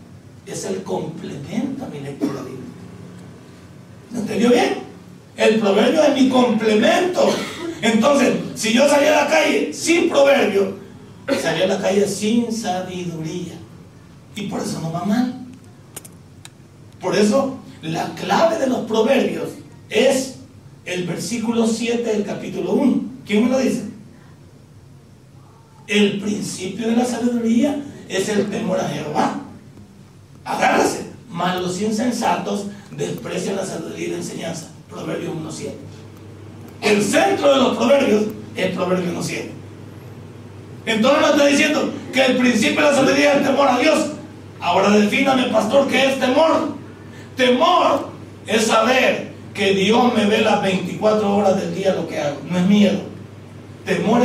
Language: Spanish